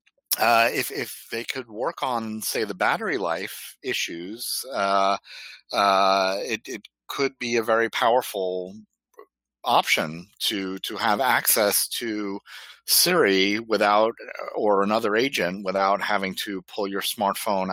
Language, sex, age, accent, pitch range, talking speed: English, male, 50-69, American, 90-105 Hz, 130 wpm